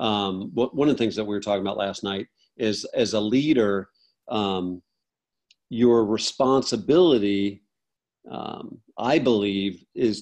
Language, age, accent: English, 50-69, American